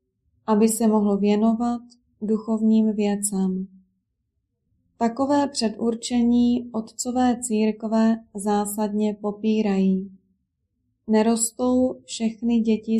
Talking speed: 70 wpm